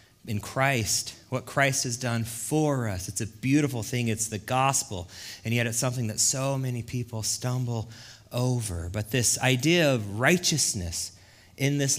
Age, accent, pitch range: 30-49, American, 105-135 Hz